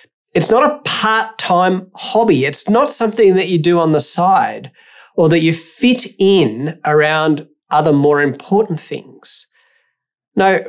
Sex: male